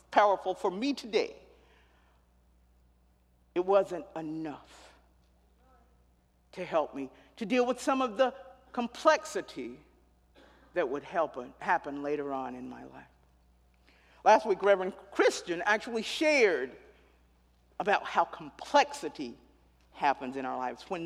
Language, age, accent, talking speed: English, 50-69, American, 110 wpm